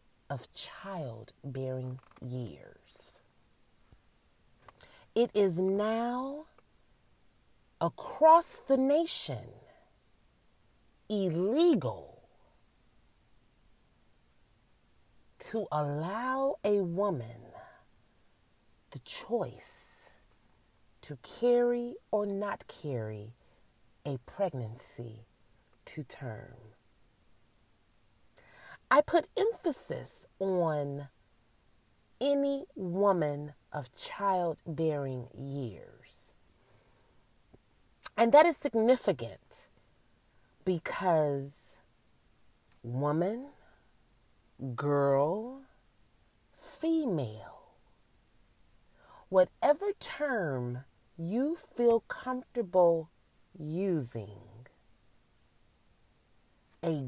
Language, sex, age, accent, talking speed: English, female, 30-49, American, 50 wpm